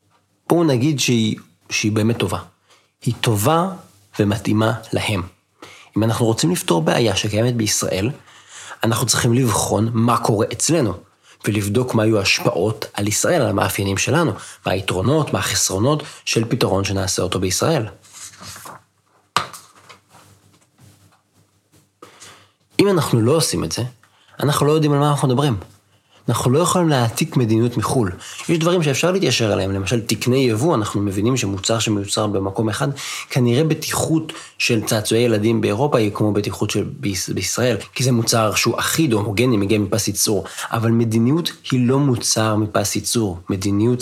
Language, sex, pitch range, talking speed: Hebrew, male, 105-125 Hz, 140 wpm